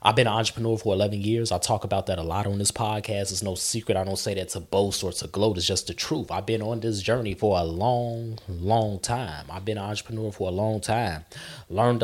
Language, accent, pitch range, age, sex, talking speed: English, American, 100-120 Hz, 20-39, male, 255 wpm